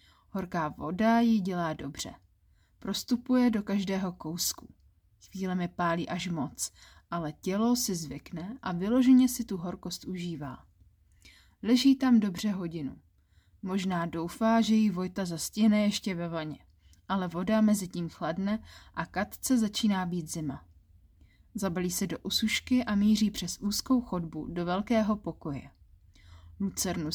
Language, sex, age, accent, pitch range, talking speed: Czech, female, 30-49, native, 155-210 Hz, 135 wpm